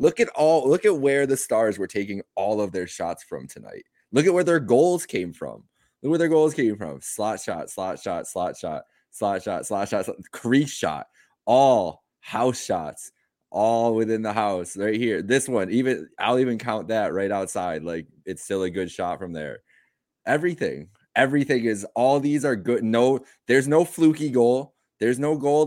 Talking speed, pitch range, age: 190 wpm, 105-140 Hz, 20-39